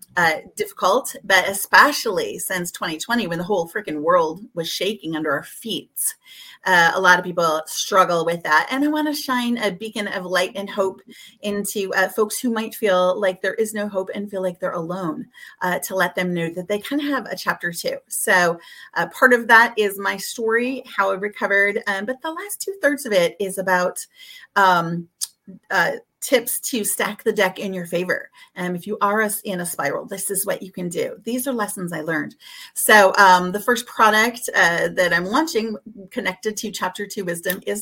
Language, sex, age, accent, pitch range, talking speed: English, female, 30-49, American, 180-220 Hz, 205 wpm